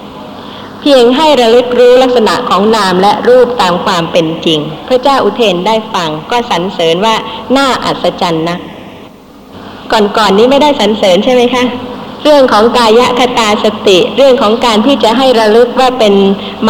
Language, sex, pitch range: Thai, female, 190-245 Hz